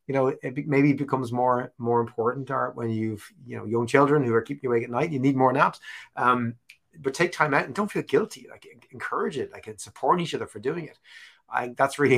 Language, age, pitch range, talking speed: English, 30-49, 100-125 Hz, 240 wpm